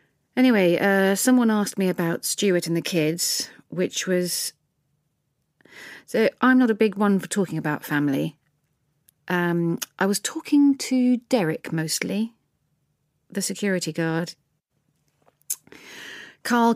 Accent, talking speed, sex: British, 120 wpm, female